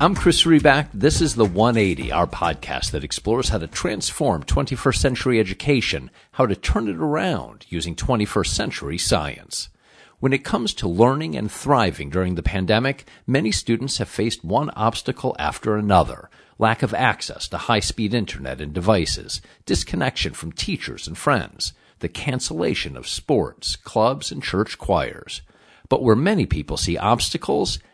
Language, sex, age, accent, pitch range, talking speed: English, male, 50-69, American, 100-135 Hz, 155 wpm